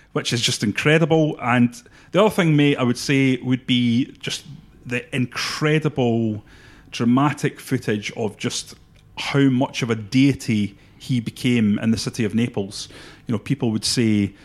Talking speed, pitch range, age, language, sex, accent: 160 wpm, 115-135 Hz, 30-49, English, male, British